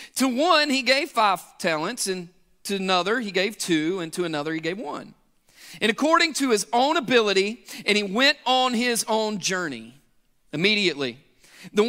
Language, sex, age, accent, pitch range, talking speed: English, male, 40-59, American, 170-235 Hz, 165 wpm